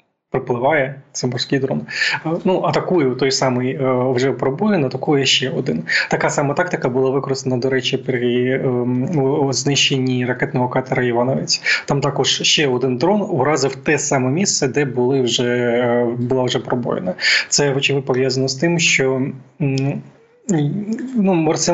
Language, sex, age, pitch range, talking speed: Ukrainian, male, 20-39, 130-160 Hz, 130 wpm